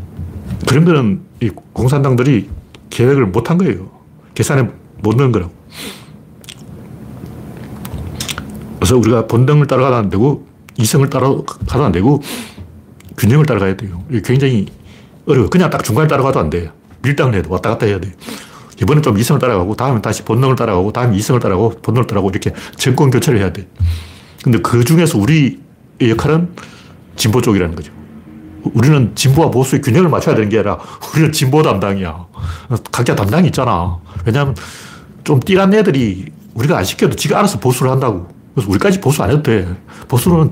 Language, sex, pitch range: Korean, male, 95-140 Hz